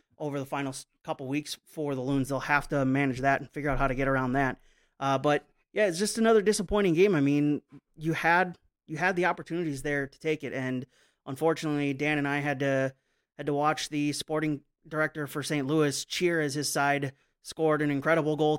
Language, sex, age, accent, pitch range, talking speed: English, male, 30-49, American, 135-160 Hz, 210 wpm